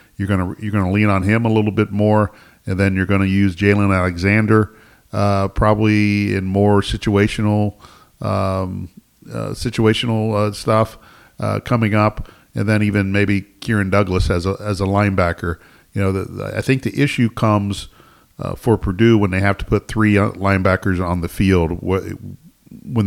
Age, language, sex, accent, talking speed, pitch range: 50-69, English, male, American, 170 wpm, 90-105 Hz